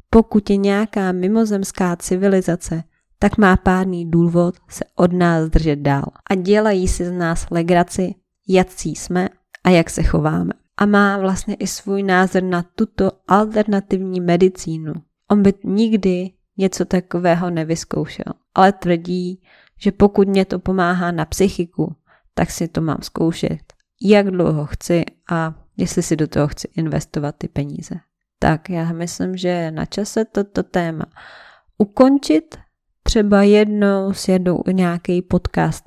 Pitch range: 170-200 Hz